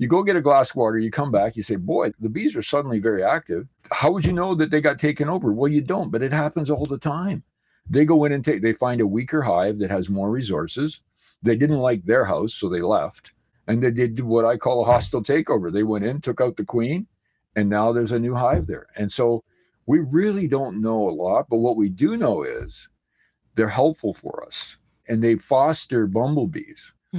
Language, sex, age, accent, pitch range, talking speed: English, male, 50-69, American, 105-150 Hz, 230 wpm